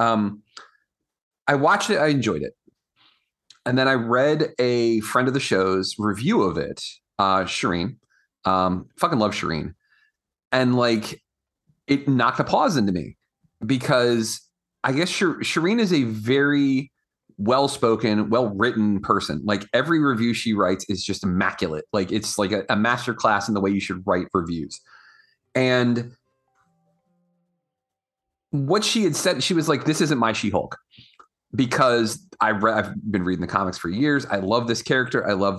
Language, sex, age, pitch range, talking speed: English, male, 30-49, 100-140 Hz, 155 wpm